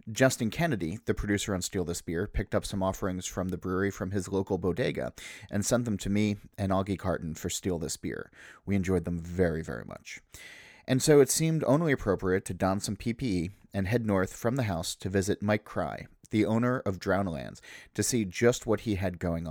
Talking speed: 210 wpm